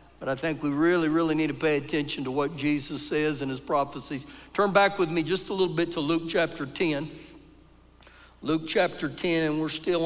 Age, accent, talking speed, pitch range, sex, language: 60-79, American, 210 wpm, 155-195 Hz, male, English